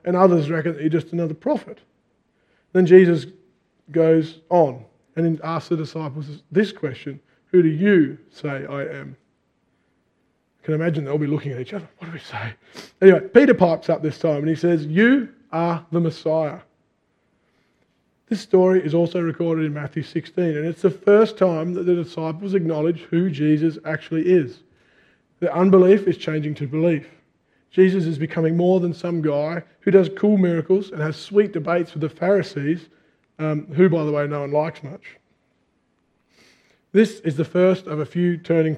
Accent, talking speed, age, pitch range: Australian, 175 wpm, 20-39, 155-185 Hz